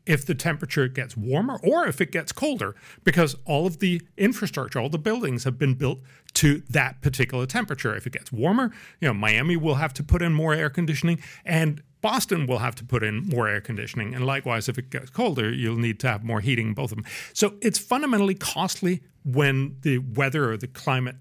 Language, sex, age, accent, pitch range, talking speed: English, male, 40-59, American, 125-170 Hz, 210 wpm